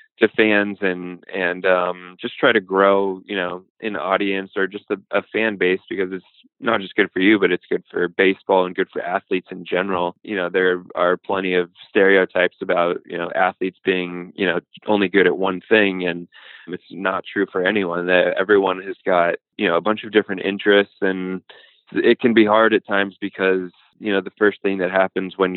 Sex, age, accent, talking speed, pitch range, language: male, 20-39, American, 210 wpm, 90-100 Hz, English